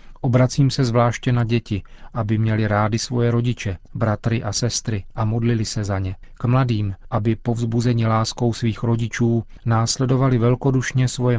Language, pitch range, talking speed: Czech, 110-125 Hz, 150 wpm